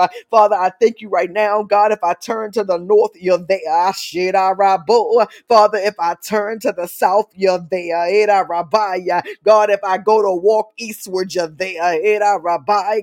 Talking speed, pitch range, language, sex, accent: 150 wpm, 190-220 Hz, English, female, American